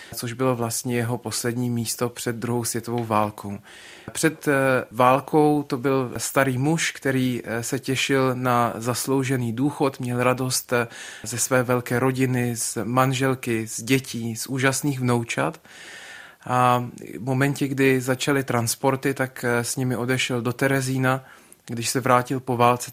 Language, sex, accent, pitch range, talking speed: Czech, male, native, 120-135 Hz, 135 wpm